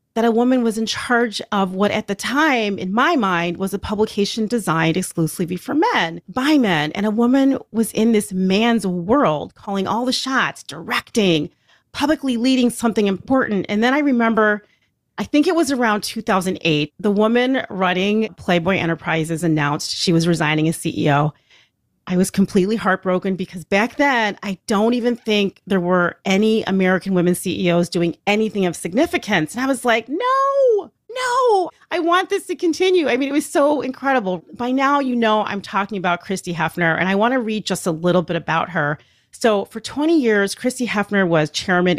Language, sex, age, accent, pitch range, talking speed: English, female, 40-59, American, 175-235 Hz, 180 wpm